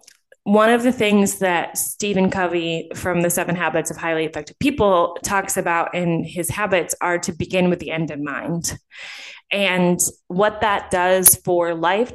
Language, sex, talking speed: English, female, 170 wpm